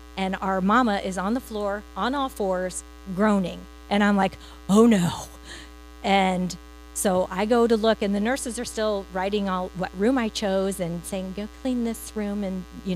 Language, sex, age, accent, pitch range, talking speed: English, female, 40-59, American, 175-235 Hz, 190 wpm